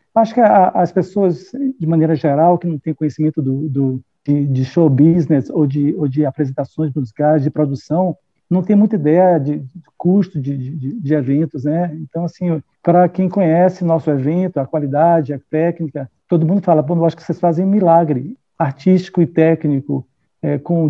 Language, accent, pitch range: Portuguese, Brazilian, 150-175 Hz